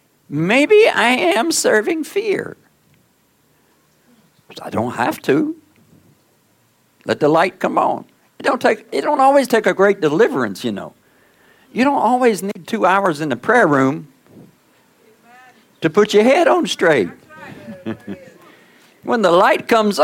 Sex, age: male, 60-79